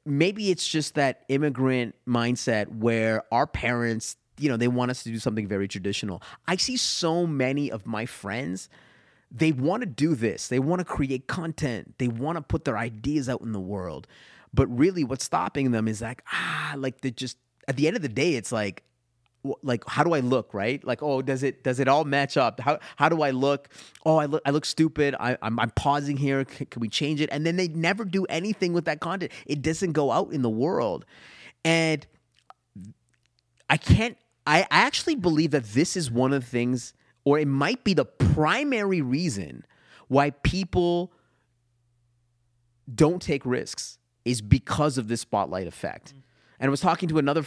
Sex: male